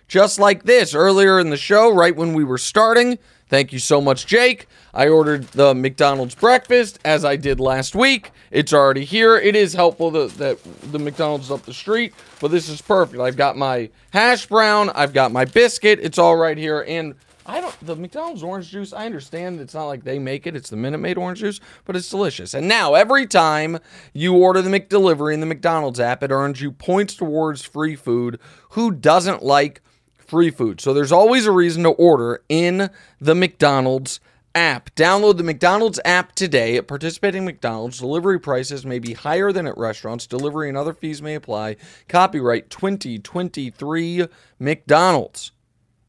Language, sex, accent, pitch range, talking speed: English, male, American, 135-195 Hz, 185 wpm